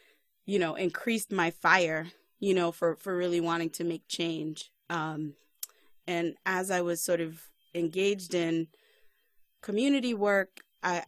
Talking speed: 140 wpm